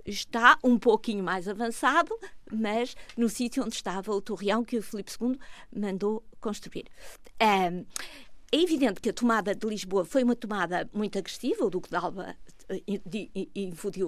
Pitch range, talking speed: 185-250 Hz, 150 wpm